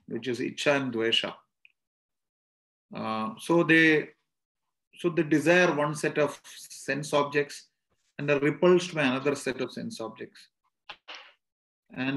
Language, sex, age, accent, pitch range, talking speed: English, male, 30-49, Indian, 130-170 Hz, 130 wpm